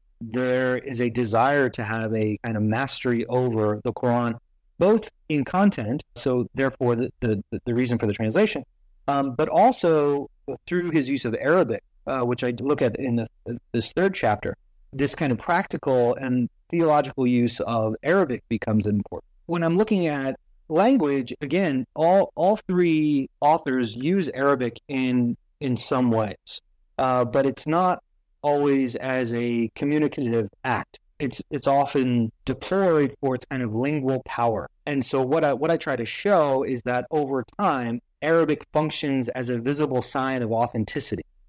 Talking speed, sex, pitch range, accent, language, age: 160 wpm, male, 120-145 Hz, American, English, 30-49